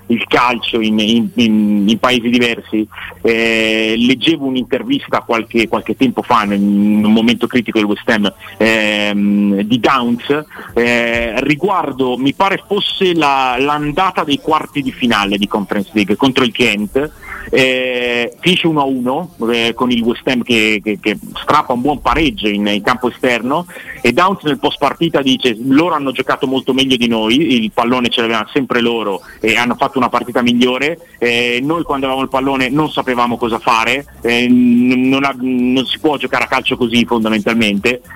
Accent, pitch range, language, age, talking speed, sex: native, 115-140 Hz, Italian, 40-59, 170 wpm, male